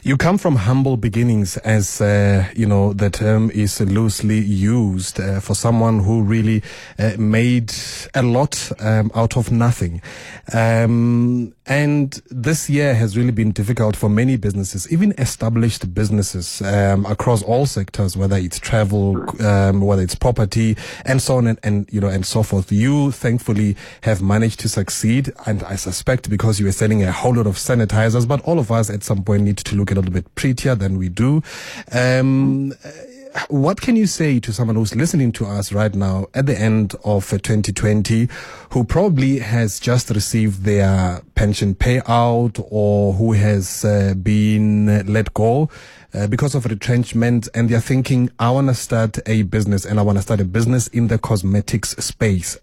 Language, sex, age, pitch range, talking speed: English, male, 30-49, 100-125 Hz, 175 wpm